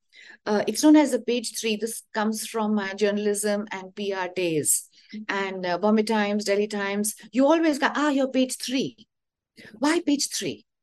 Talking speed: 175 wpm